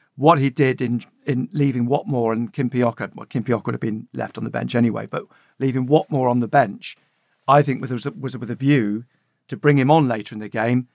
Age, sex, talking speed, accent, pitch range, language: 50-69, male, 225 wpm, British, 115-135 Hz, English